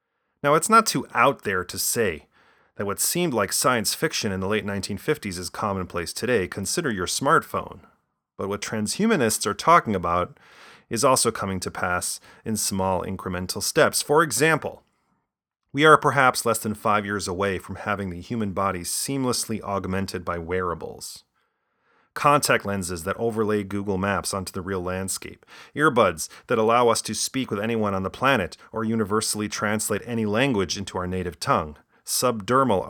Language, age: English, 30-49